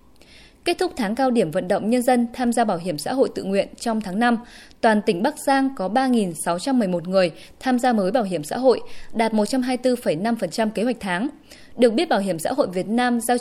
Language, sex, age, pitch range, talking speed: Vietnamese, female, 20-39, 195-255 Hz, 215 wpm